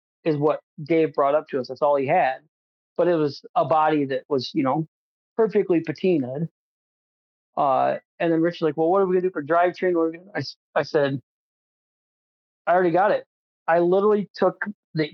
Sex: male